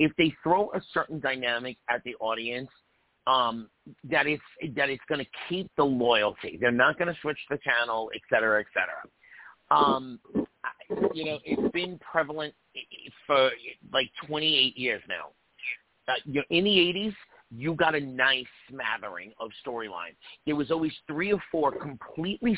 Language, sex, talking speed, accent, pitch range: English, male, 160 wpm, American, 125-170 Hz